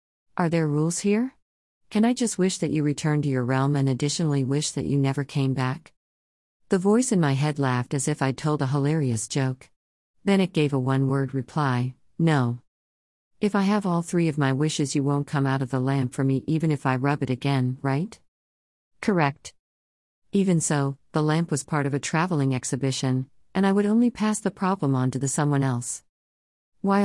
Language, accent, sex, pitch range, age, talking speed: English, American, female, 130-170 Hz, 50-69, 200 wpm